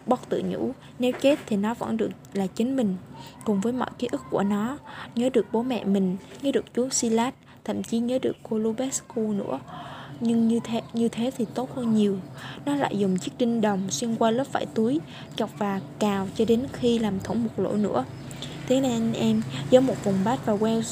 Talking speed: 220 wpm